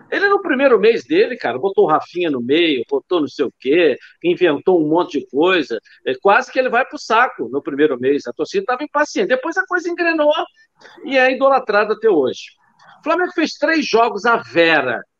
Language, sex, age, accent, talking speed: Portuguese, male, 50-69, Brazilian, 200 wpm